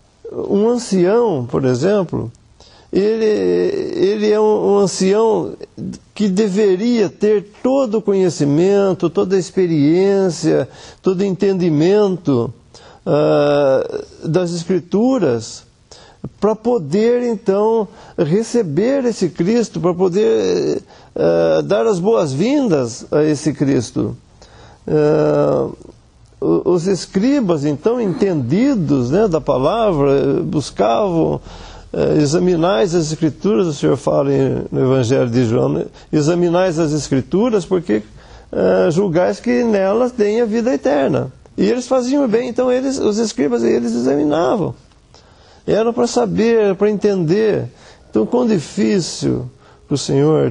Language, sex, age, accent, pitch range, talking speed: English, male, 50-69, Brazilian, 145-215 Hz, 105 wpm